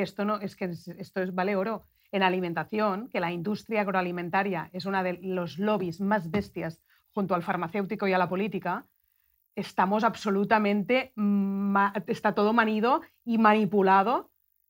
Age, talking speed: 30-49, 145 wpm